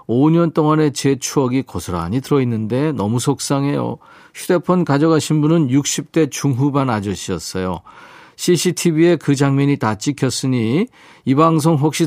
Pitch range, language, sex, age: 110-160 Hz, Korean, male, 50-69